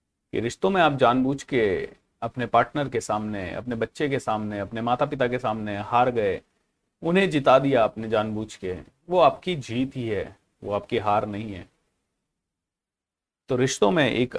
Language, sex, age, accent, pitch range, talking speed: Hindi, male, 40-59, native, 110-160 Hz, 165 wpm